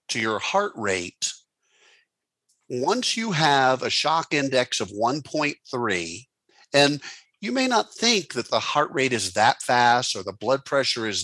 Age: 50-69